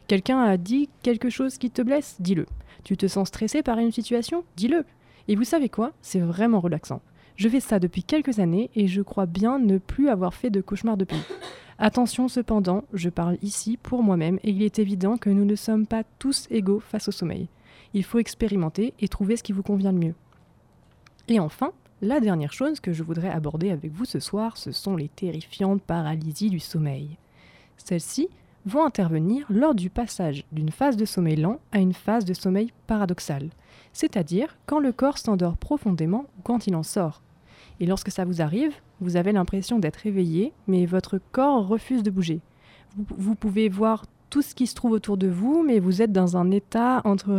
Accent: French